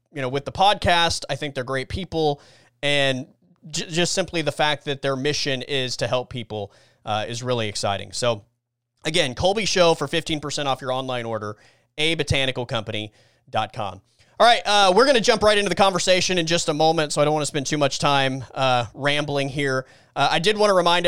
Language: English